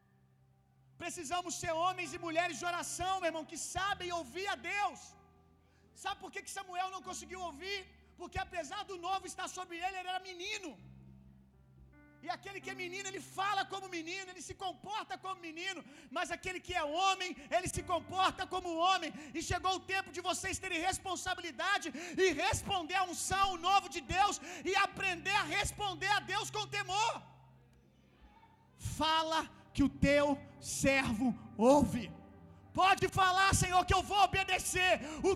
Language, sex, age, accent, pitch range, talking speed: Gujarati, male, 40-59, Brazilian, 285-380 Hz, 160 wpm